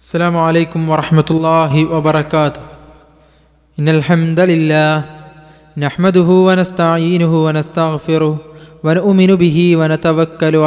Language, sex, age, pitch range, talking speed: Malayalam, male, 20-39, 165-205 Hz, 80 wpm